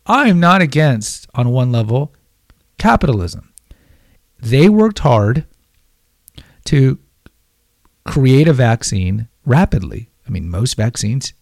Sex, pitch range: male, 105-150 Hz